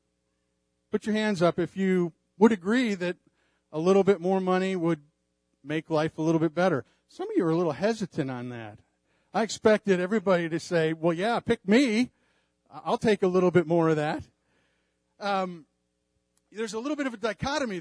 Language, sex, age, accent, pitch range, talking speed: English, male, 40-59, American, 140-210 Hz, 185 wpm